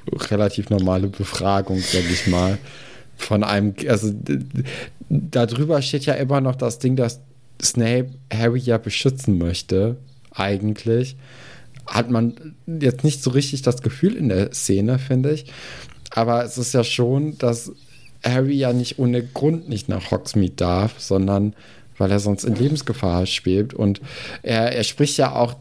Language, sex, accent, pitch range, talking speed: German, male, German, 105-130 Hz, 150 wpm